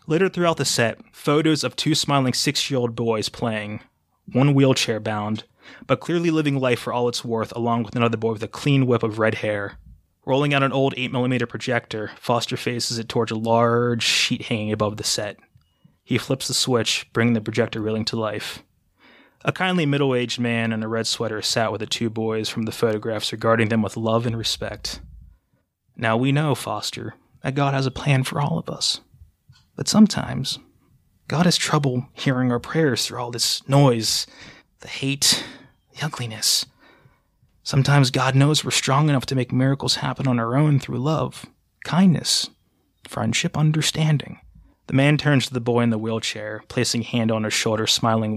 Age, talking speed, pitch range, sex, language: 20-39, 175 wpm, 115-140 Hz, male, English